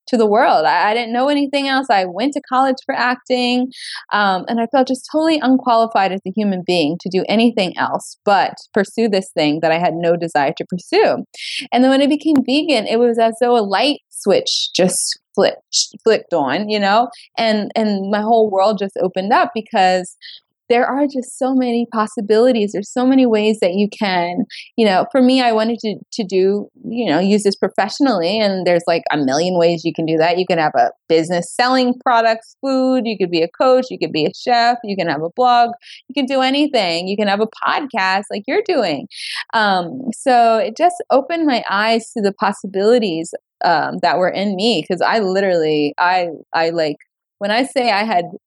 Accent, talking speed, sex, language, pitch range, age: American, 205 wpm, female, English, 185-250 Hz, 20-39